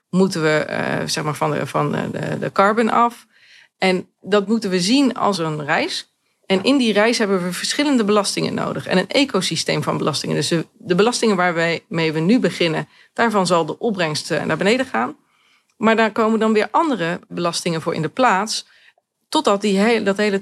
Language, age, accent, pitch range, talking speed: Dutch, 40-59, Dutch, 165-220 Hz, 190 wpm